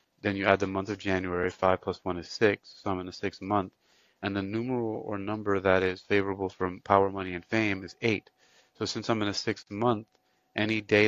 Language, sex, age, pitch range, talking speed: English, male, 30-49, 95-100 Hz, 225 wpm